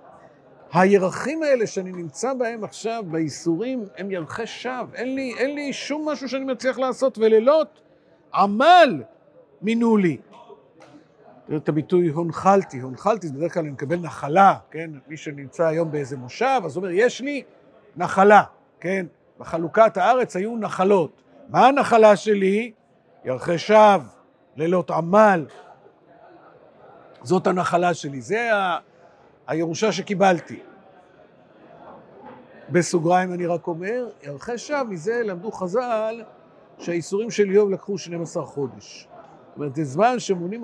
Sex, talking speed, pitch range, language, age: male, 125 wpm, 170-240 Hz, Hebrew, 50-69